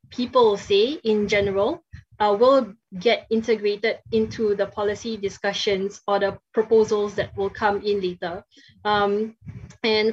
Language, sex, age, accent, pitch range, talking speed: English, female, 20-39, Malaysian, 200-235 Hz, 130 wpm